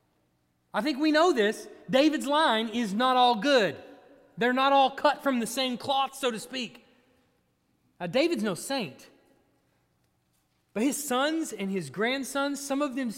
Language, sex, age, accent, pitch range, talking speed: English, male, 30-49, American, 165-260 Hz, 160 wpm